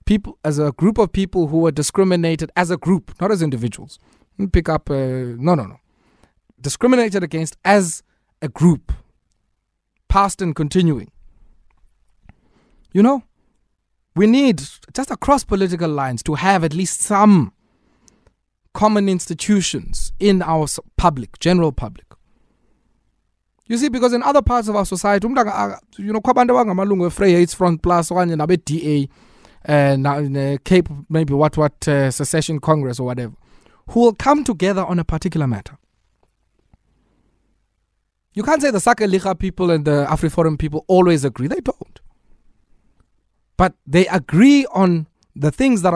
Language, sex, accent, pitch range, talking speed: English, male, South African, 140-195 Hz, 145 wpm